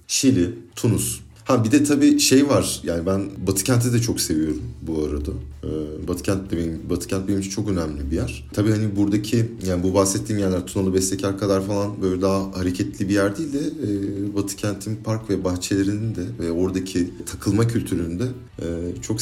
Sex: male